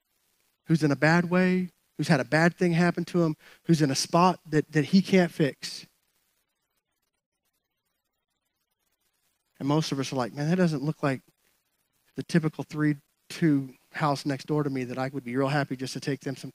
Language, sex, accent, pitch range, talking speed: English, male, American, 135-160 Hz, 190 wpm